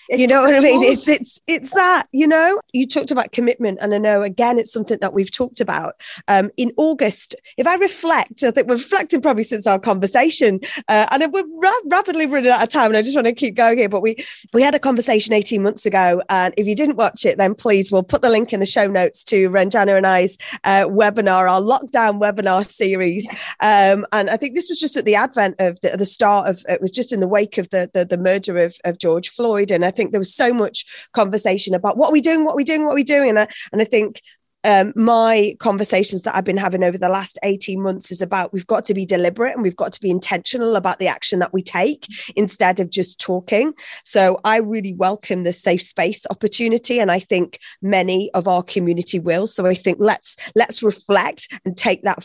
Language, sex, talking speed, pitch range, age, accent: English, female, 235 wpm, 190-235 Hz, 30-49, British